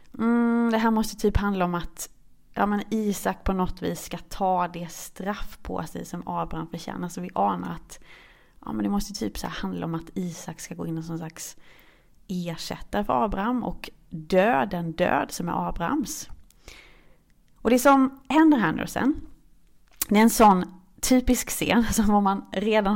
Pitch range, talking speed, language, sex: 175-225 Hz, 185 wpm, Swedish, female